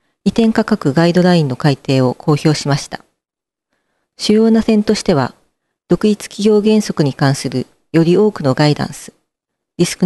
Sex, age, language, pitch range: female, 40-59, Japanese, 140-200 Hz